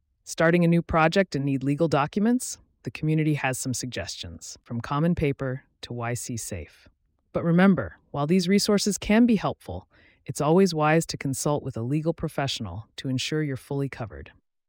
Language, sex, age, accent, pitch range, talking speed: English, female, 30-49, American, 120-165 Hz, 165 wpm